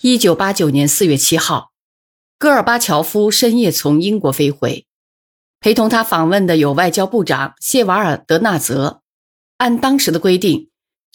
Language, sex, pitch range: Chinese, female, 150-230 Hz